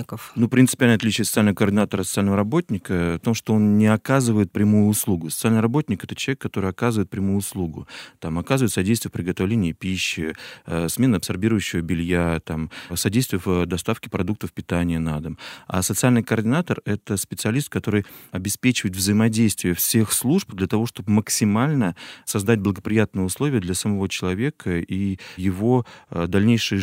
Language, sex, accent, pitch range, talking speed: Russian, male, native, 90-110 Hz, 140 wpm